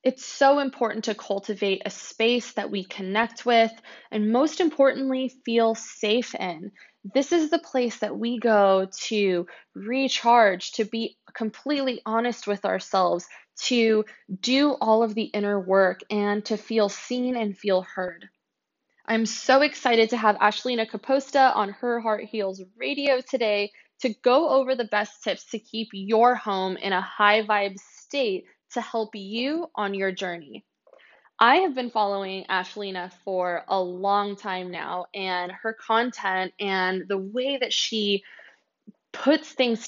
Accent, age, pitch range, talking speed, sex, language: American, 20-39, 195-240 Hz, 150 wpm, female, English